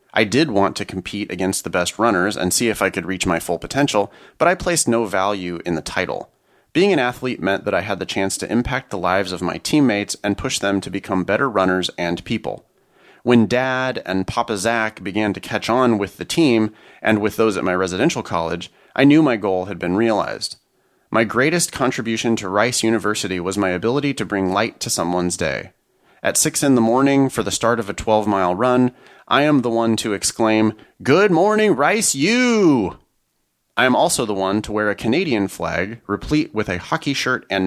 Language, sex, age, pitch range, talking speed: English, male, 30-49, 95-120 Hz, 205 wpm